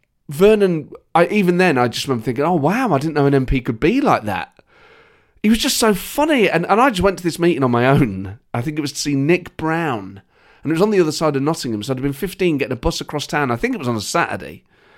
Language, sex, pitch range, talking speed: English, male, 135-200 Hz, 275 wpm